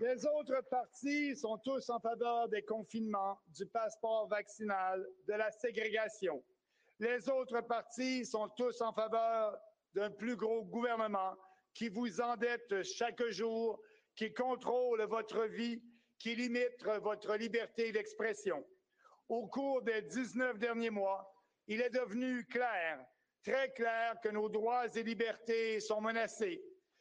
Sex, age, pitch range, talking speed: male, 60-79, 220-255 Hz, 130 wpm